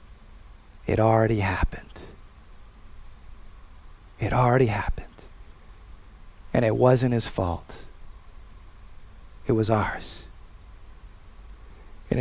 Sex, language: male, English